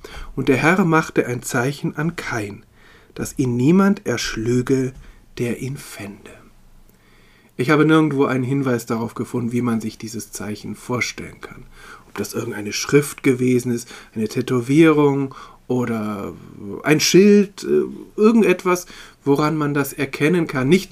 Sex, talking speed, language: male, 135 wpm, German